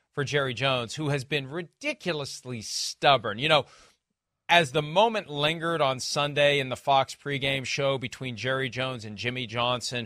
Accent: American